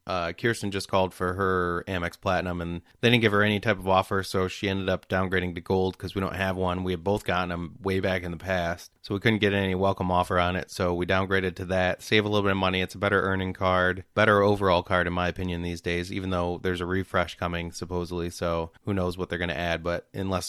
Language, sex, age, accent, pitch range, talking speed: English, male, 30-49, American, 90-105 Hz, 260 wpm